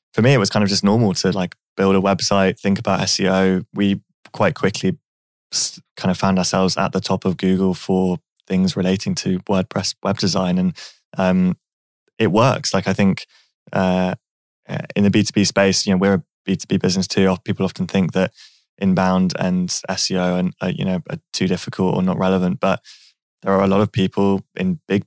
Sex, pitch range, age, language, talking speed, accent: male, 95-100 Hz, 20-39, English, 200 wpm, British